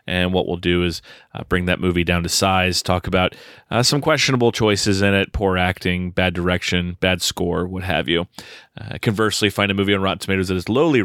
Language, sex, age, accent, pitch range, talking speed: English, male, 30-49, American, 90-110 Hz, 215 wpm